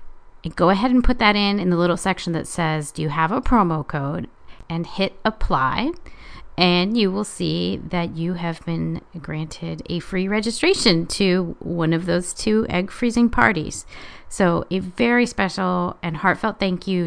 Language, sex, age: English, female, 30-49